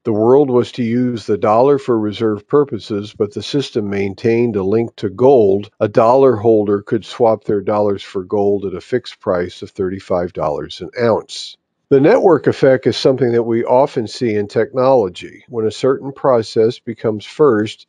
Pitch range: 105-125 Hz